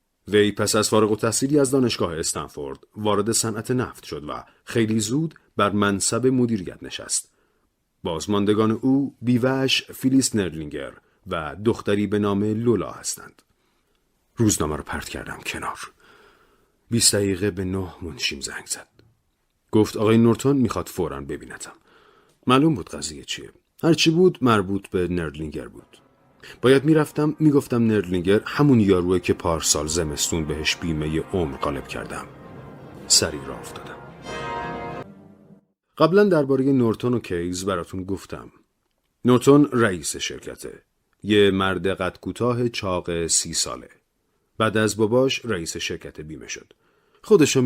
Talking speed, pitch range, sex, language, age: 130 wpm, 95-130 Hz, male, Persian, 40-59